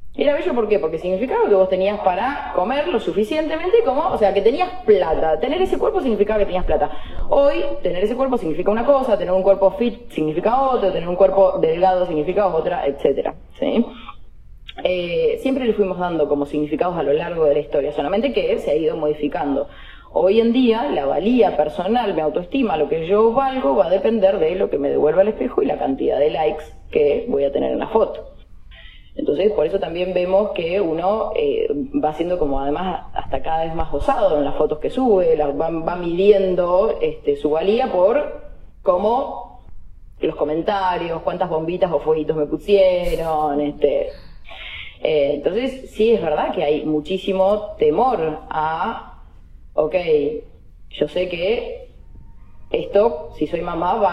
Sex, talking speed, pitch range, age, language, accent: female, 175 wpm, 160-260 Hz, 20-39, Spanish, Argentinian